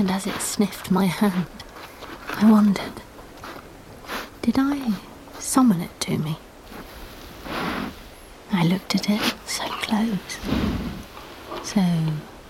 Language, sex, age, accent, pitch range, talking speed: English, female, 30-49, British, 170-210 Hz, 100 wpm